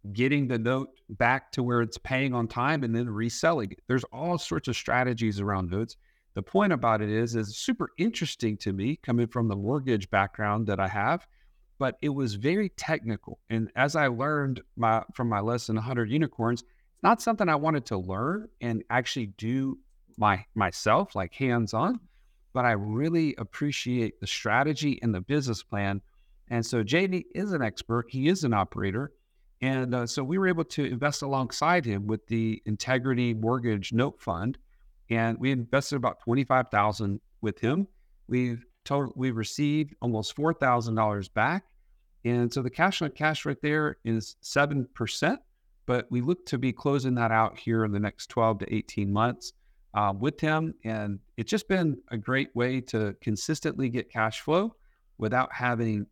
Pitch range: 110-140 Hz